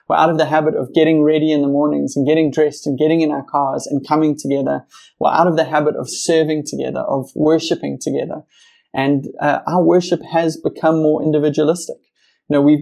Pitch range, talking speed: 145-160 Hz, 205 wpm